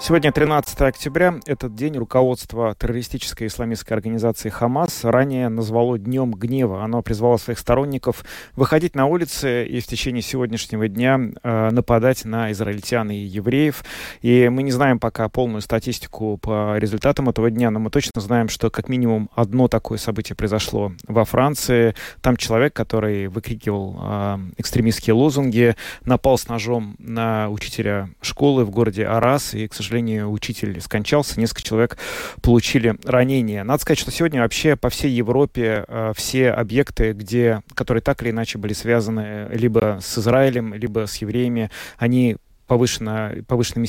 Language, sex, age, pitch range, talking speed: Russian, male, 20-39, 110-125 Hz, 145 wpm